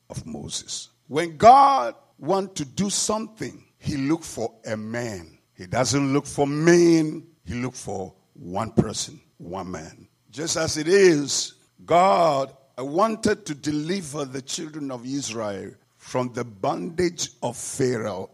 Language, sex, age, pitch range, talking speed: English, male, 60-79, 140-200 Hz, 135 wpm